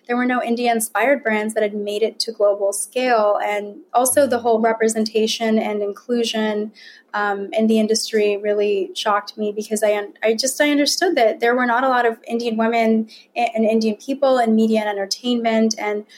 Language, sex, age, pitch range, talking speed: English, female, 20-39, 210-235 Hz, 185 wpm